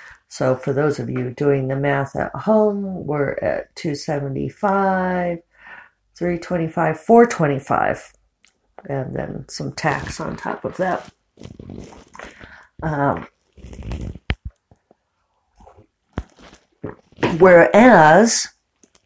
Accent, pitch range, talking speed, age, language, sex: American, 165-215 Hz, 80 wpm, 50-69, English, female